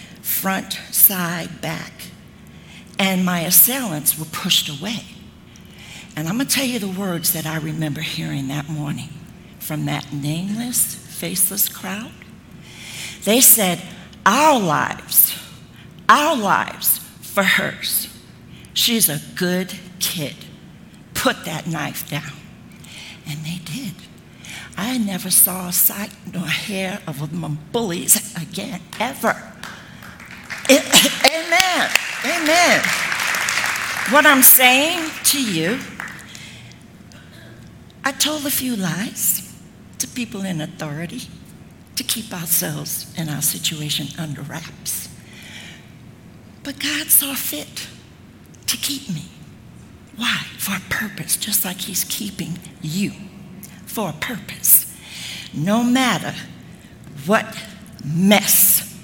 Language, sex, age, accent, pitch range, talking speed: English, female, 60-79, American, 160-220 Hz, 110 wpm